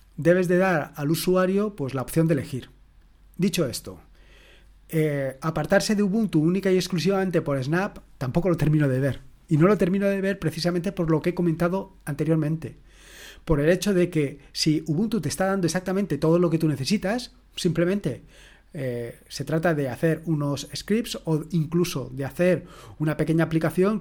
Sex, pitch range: male, 145-180 Hz